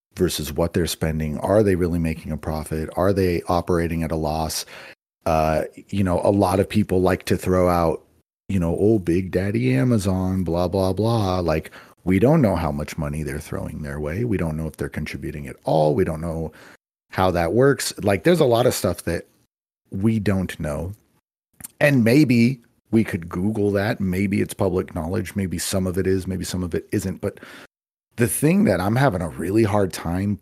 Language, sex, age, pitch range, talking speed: English, male, 40-59, 85-105 Hz, 200 wpm